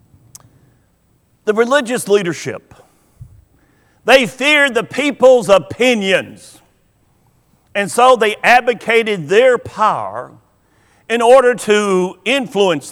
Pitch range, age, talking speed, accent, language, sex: 175-245 Hz, 50-69, 85 wpm, American, English, male